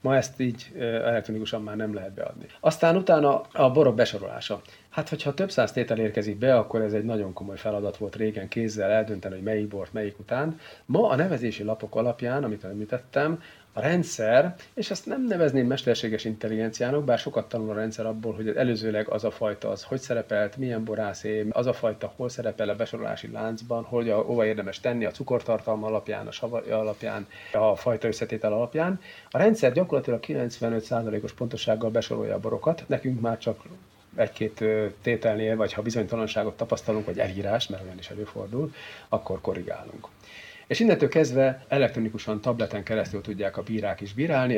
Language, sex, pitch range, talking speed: Hungarian, male, 105-125 Hz, 165 wpm